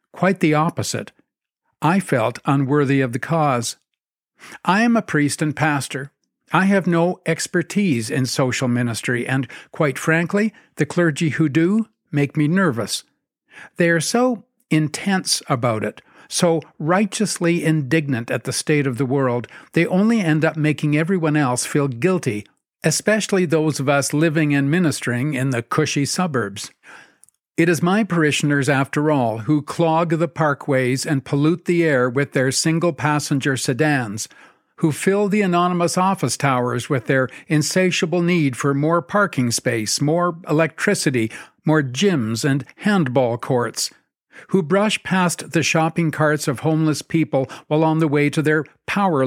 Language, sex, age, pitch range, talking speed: English, male, 60-79, 135-170 Hz, 150 wpm